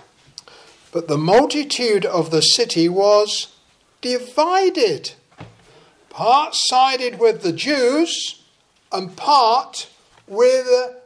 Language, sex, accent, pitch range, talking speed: English, male, British, 205-335 Hz, 85 wpm